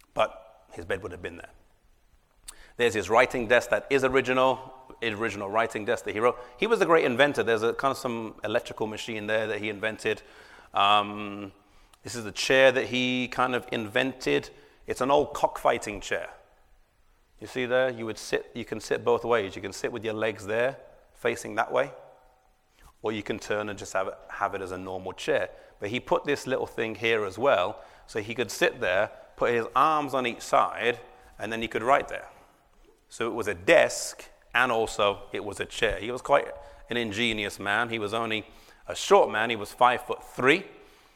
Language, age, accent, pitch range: English, 30-49, British, 105-130 Hz